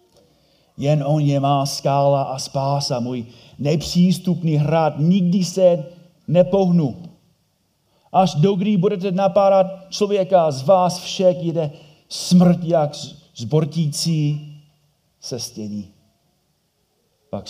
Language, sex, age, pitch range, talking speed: Czech, male, 40-59, 105-150 Hz, 100 wpm